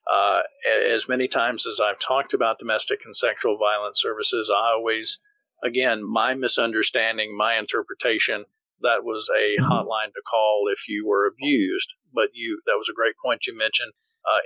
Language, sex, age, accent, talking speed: English, male, 50-69, American, 165 wpm